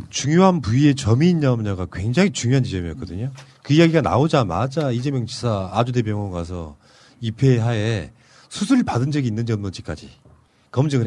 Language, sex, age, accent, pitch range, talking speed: English, male, 40-59, Korean, 115-170 Hz, 120 wpm